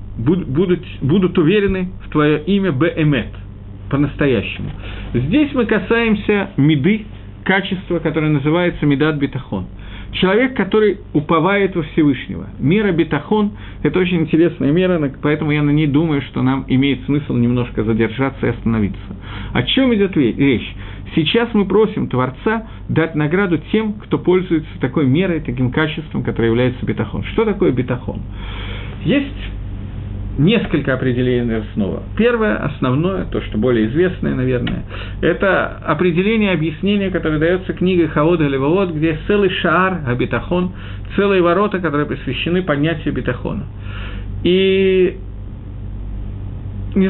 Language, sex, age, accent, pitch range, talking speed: Russian, male, 50-69, native, 110-180 Hz, 120 wpm